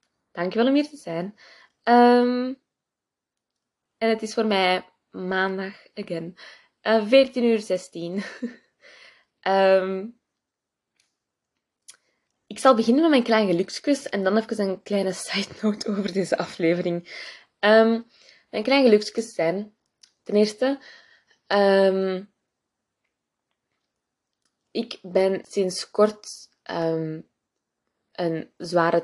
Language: Dutch